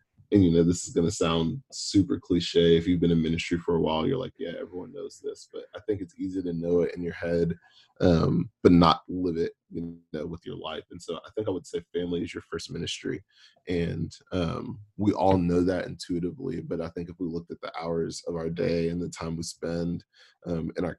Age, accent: 20-39, American